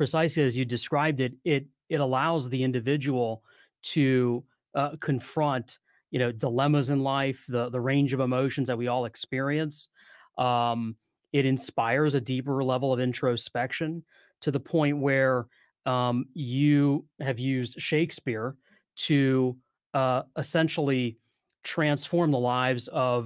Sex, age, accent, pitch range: male, 30-49, American, 125-145 Hz